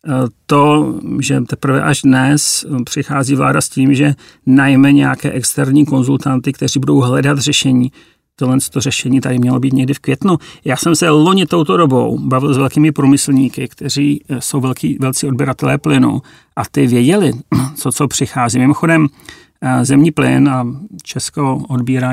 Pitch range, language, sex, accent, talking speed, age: 130-145 Hz, Czech, male, native, 150 wpm, 40-59